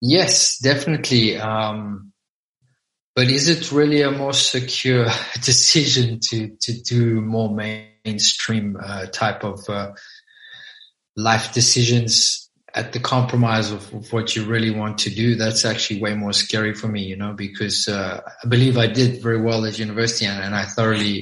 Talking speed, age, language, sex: 160 wpm, 20-39, German, male